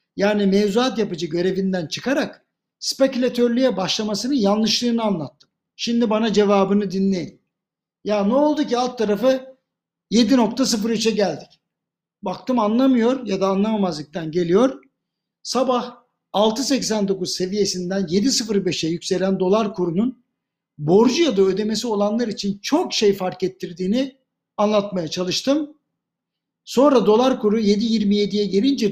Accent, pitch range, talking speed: native, 195-245 Hz, 105 wpm